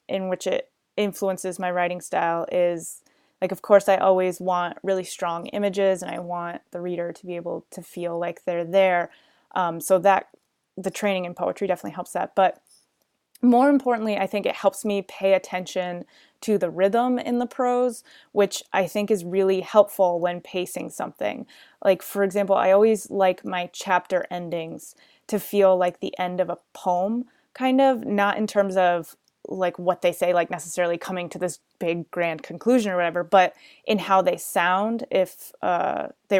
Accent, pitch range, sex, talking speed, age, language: American, 175-205 Hz, female, 180 wpm, 20-39, English